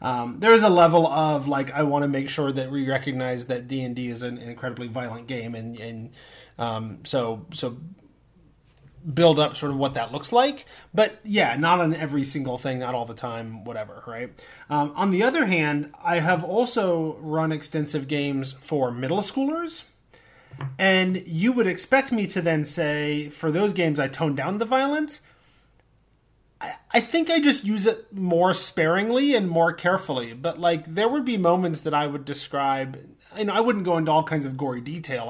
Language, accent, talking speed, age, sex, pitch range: English, American, 185 wpm, 30-49, male, 130-170 Hz